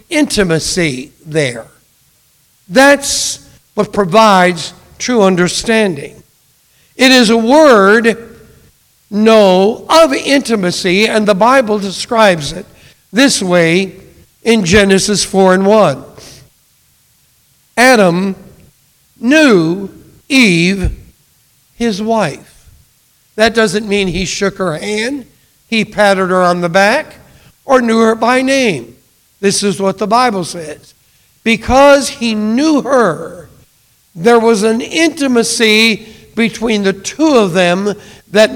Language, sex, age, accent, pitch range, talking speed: English, male, 60-79, American, 185-235 Hz, 105 wpm